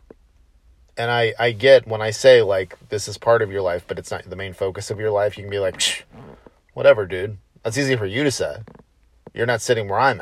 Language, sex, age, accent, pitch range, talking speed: English, male, 40-59, American, 85-125 Hz, 235 wpm